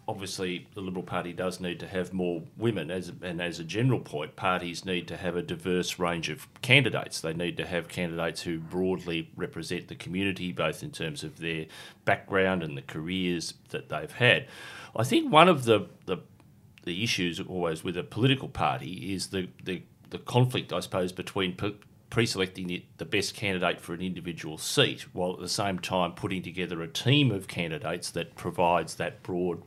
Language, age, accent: English, 40-59, Australian